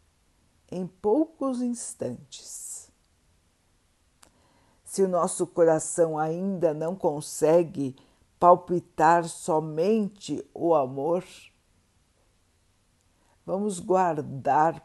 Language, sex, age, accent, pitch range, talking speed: Portuguese, female, 60-79, Brazilian, 135-180 Hz, 65 wpm